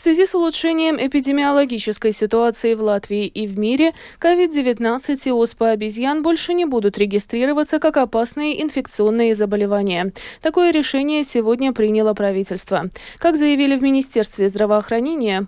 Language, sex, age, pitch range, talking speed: Russian, female, 20-39, 210-285 Hz, 130 wpm